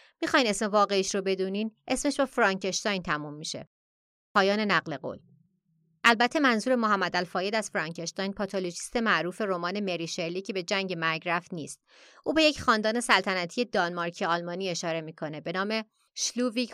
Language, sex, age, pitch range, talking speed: Persian, female, 30-49, 175-220 Hz, 145 wpm